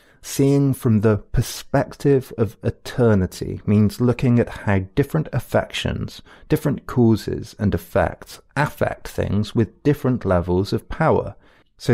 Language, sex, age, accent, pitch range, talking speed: English, male, 30-49, British, 95-125 Hz, 120 wpm